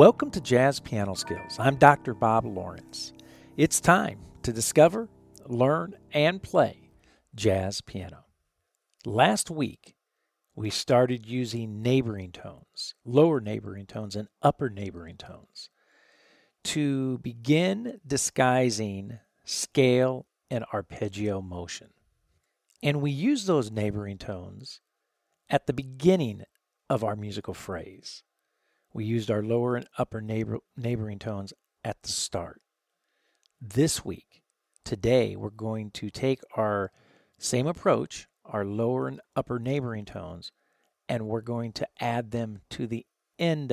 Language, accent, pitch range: English, American, 105-135 Hz